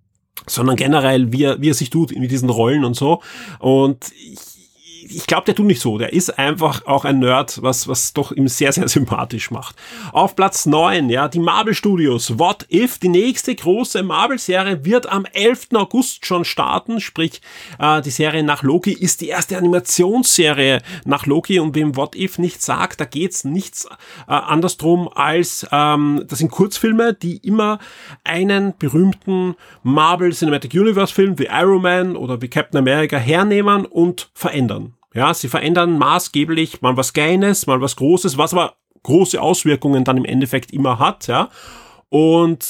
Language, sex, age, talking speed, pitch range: German, male, 30-49, 165 wpm, 135-180 Hz